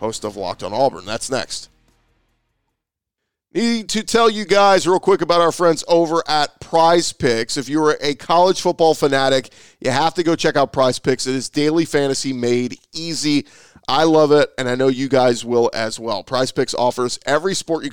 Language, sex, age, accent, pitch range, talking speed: English, male, 40-59, American, 125-155 Hz, 200 wpm